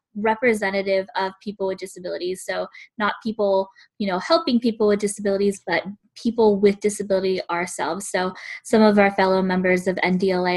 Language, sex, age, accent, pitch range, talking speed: English, female, 10-29, American, 185-220 Hz, 155 wpm